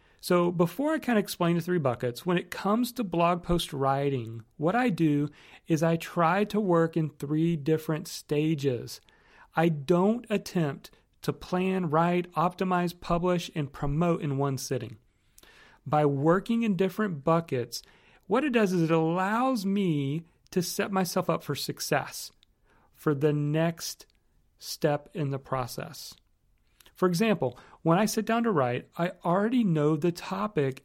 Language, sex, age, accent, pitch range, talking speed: English, male, 40-59, American, 140-190 Hz, 155 wpm